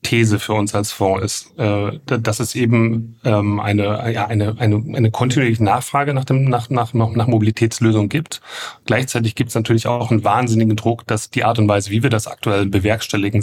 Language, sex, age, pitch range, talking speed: German, male, 30-49, 105-120 Hz, 190 wpm